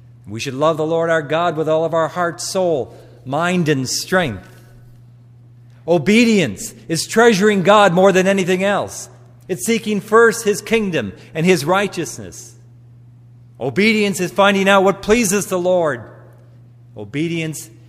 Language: English